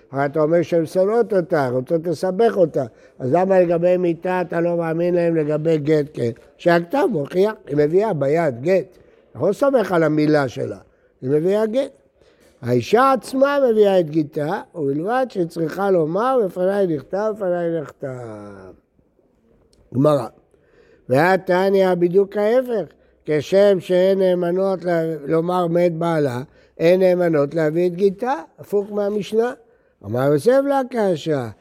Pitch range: 155-195 Hz